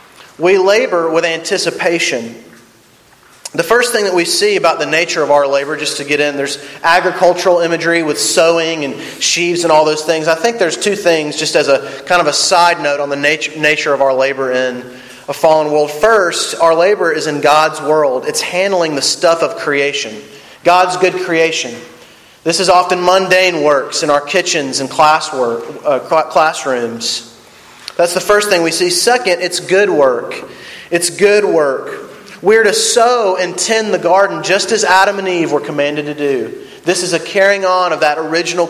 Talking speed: 185 wpm